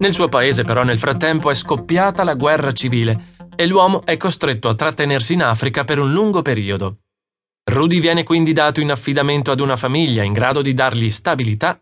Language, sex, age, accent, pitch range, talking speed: Italian, male, 30-49, native, 115-170 Hz, 190 wpm